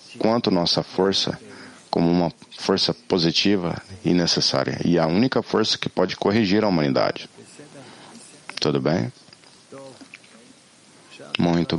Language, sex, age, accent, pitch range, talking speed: English, male, 50-69, Brazilian, 85-110 Hz, 105 wpm